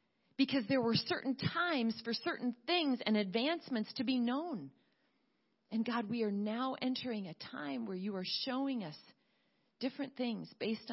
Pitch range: 190-260 Hz